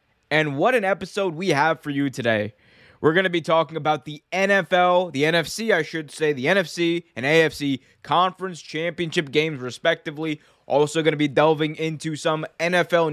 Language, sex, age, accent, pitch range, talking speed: English, male, 20-39, American, 140-175 Hz, 175 wpm